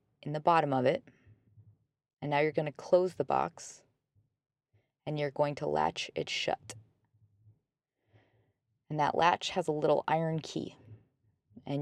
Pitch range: 120-160 Hz